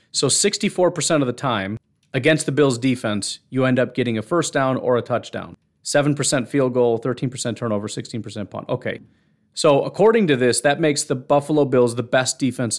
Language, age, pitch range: English, 30-49, 125-165 Hz